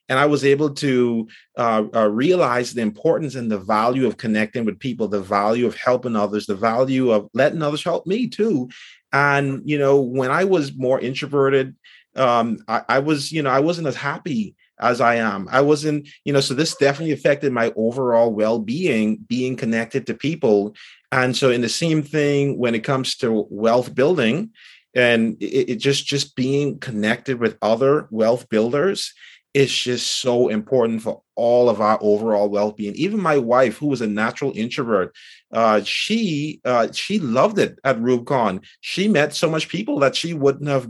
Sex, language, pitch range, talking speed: male, English, 115-145 Hz, 185 wpm